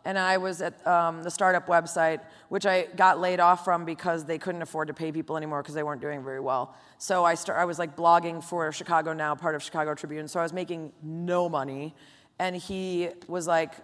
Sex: female